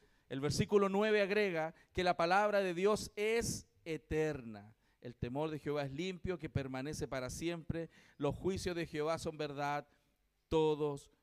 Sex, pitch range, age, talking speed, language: male, 165-205 Hz, 40-59, 150 wpm, Spanish